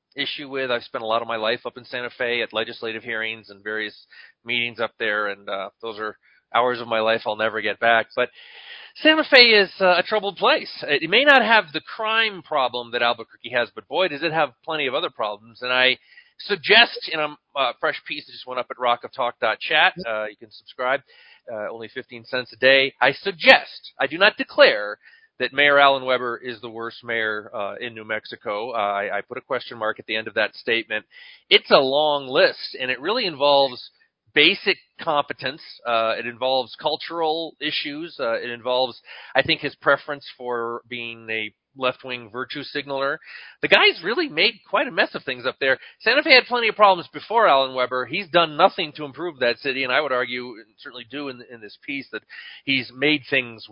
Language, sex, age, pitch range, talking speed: English, male, 40-59, 115-175 Hz, 210 wpm